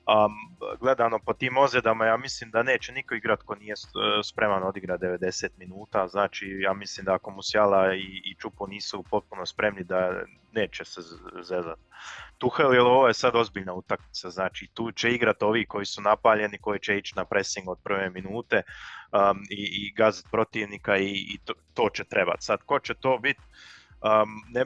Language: Croatian